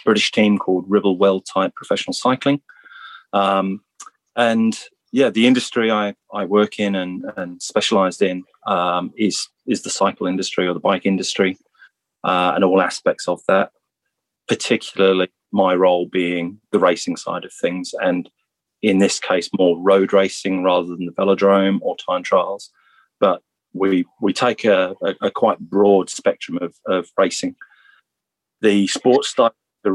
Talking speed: 155 wpm